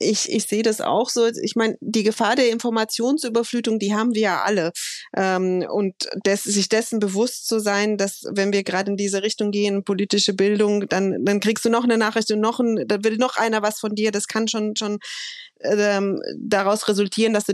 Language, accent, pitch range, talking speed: German, German, 200-230 Hz, 205 wpm